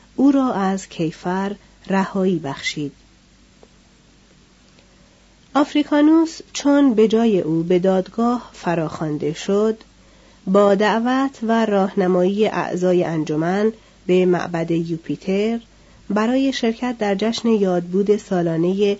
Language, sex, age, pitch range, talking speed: Persian, female, 40-59, 170-220 Hz, 95 wpm